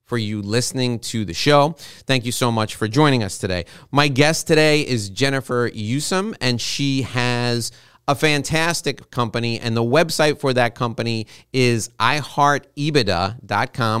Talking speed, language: 145 wpm, English